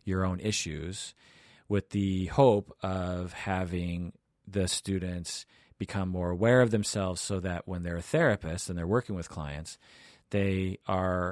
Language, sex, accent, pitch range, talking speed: English, male, American, 85-100 Hz, 150 wpm